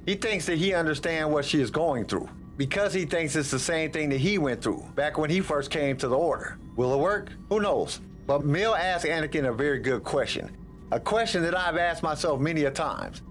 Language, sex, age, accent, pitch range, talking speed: English, male, 50-69, American, 140-180 Hz, 230 wpm